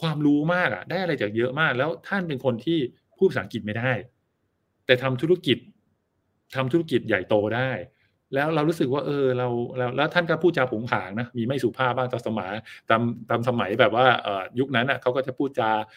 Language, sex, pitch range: Thai, male, 110-135 Hz